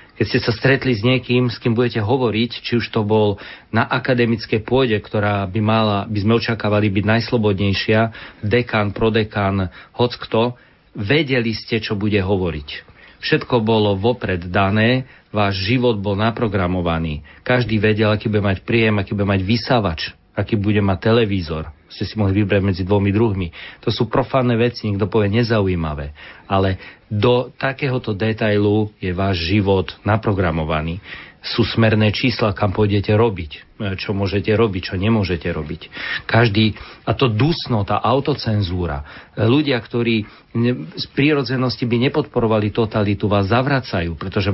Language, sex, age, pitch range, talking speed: Slovak, male, 40-59, 100-120 Hz, 140 wpm